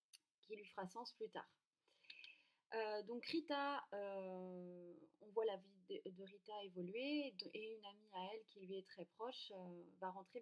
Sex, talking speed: female, 180 wpm